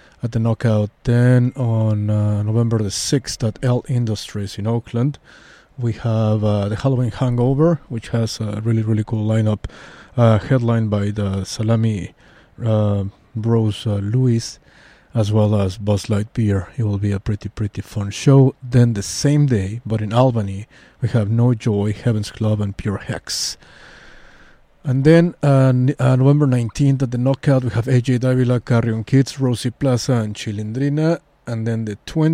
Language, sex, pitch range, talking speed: English, male, 105-125 Hz, 165 wpm